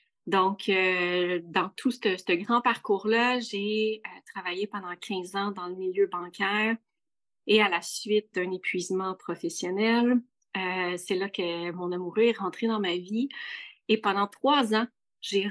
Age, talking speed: 30-49, 155 wpm